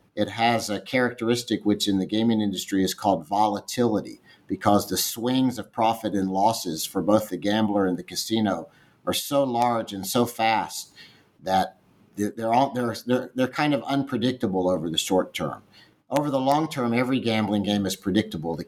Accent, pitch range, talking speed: American, 95-125 Hz, 175 wpm